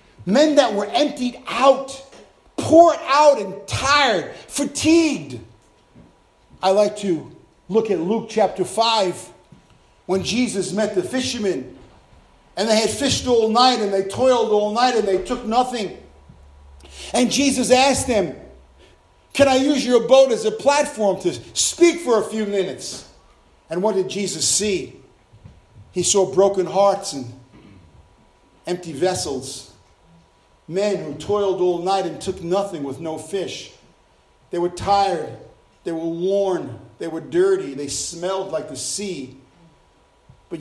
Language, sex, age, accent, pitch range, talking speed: English, male, 50-69, American, 155-250 Hz, 140 wpm